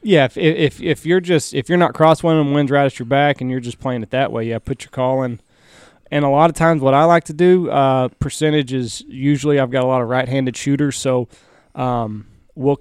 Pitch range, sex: 115-140 Hz, male